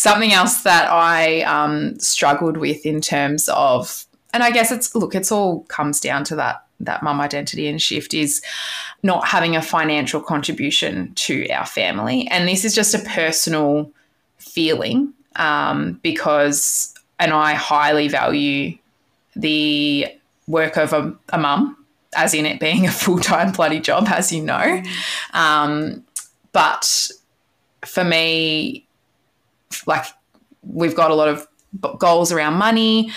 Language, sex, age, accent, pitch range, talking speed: English, female, 20-39, Australian, 150-200 Hz, 140 wpm